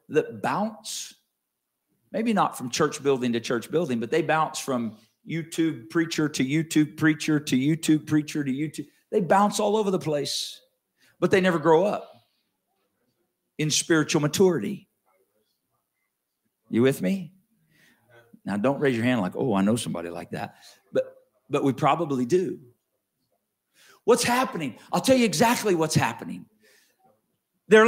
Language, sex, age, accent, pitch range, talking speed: English, male, 50-69, American, 155-230 Hz, 145 wpm